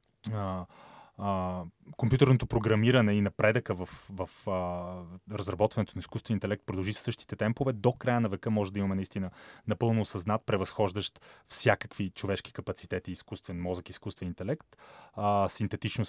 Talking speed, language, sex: 130 wpm, Bulgarian, male